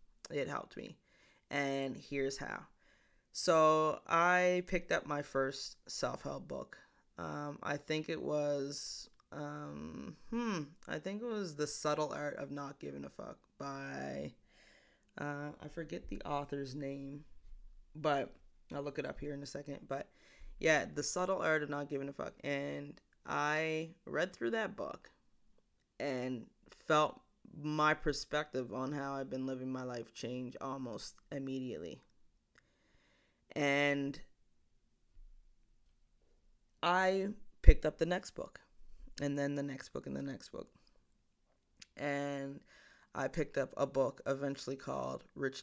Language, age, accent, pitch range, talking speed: English, 20-39, American, 135-155 Hz, 140 wpm